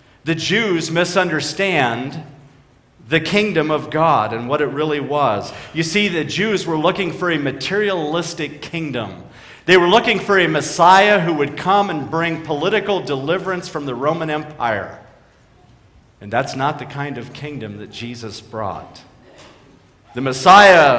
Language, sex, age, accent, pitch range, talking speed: English, male, 40-59, American, 125-170 Hz, 145 wpm